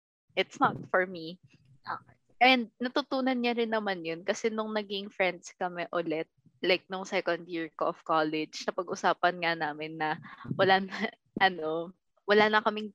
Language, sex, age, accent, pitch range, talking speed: English, female, 20-39, Filipino, 165-210 Hz, 160 wpm